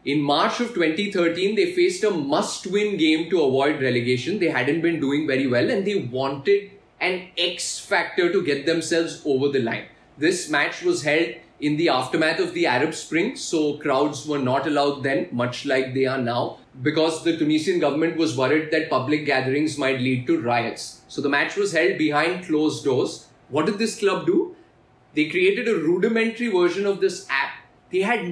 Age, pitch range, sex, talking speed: 20-39, 150-210 Hz, male, 185 wpm